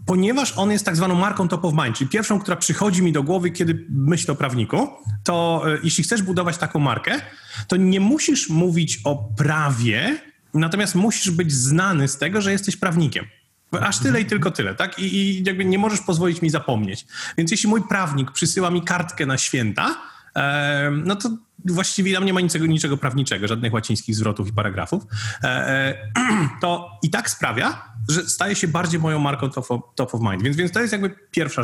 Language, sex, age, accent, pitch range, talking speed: Polish, male, 30-49, native, 135-185 Hz, 190 wpm